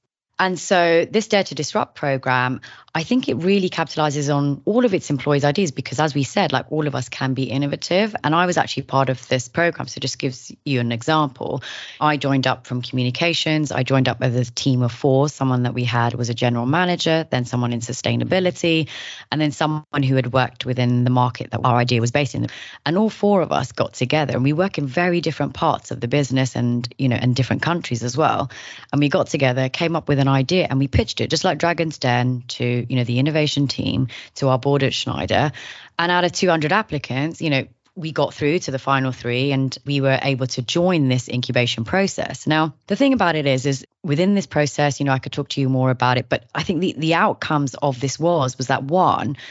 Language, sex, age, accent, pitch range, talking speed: English, female, 20-39, British, 125-160 Hz, 230 wpm